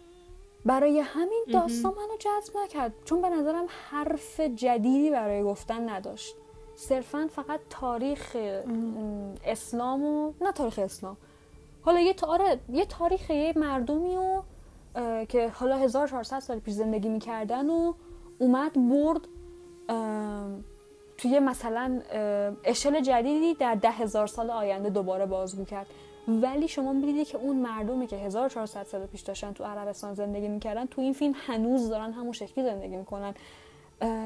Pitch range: 215-280 Hz